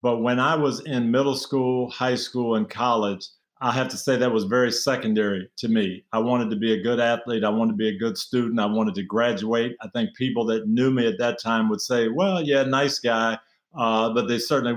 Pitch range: 110-130 Hz